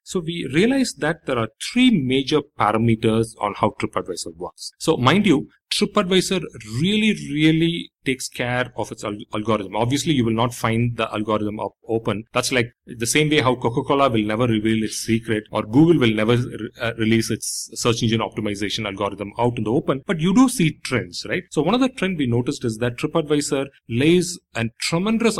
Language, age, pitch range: English, 30-49, 110-150 Hz